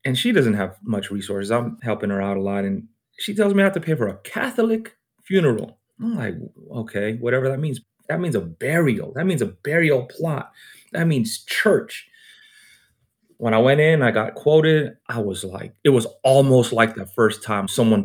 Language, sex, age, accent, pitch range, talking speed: English, male, 30-49, American, 100-120 Hz, 200 wpm